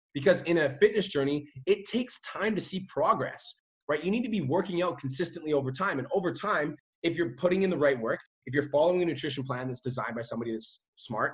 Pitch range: 135-195 Hz